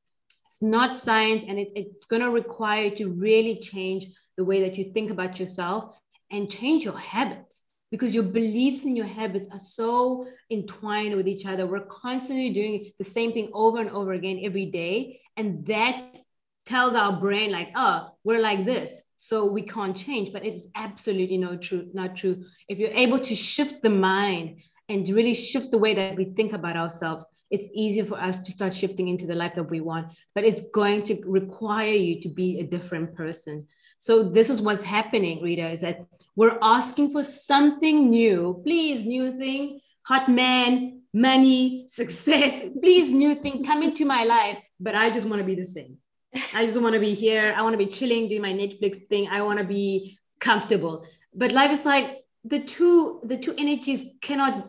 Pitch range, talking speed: 190-250 Hz, 190 wpm